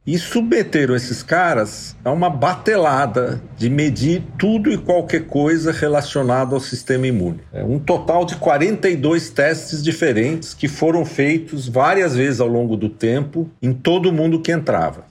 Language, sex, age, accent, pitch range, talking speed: Portuguese, male, 50-69, Brazilian, 120-170 Hz, 145 wpm